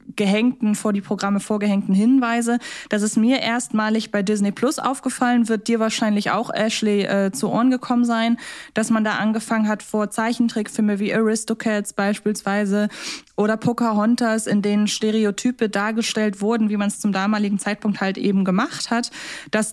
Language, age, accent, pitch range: German, 20-39, German, 200-230 Hz